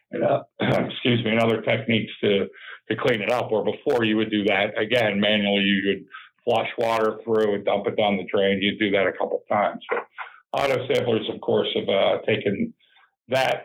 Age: 50-69